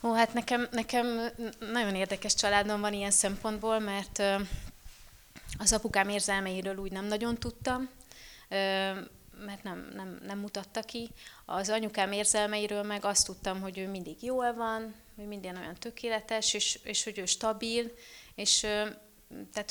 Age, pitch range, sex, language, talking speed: 30-49, 190-220 Hz, female, Hungarian, 140 wpm